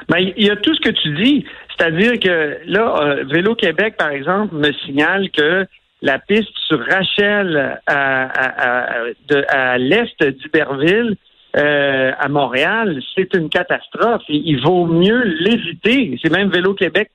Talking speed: 155 wpm